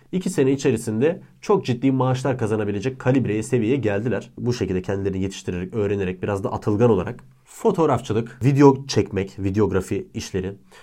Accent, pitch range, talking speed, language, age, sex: Turkish, 105-150 Hz, 135 wpm, English, 30-49, male